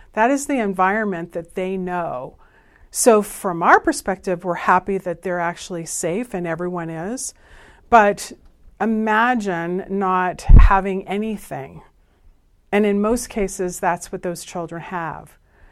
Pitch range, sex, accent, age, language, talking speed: 180-225 Hz, female, American, 40-59, English, 130 wpm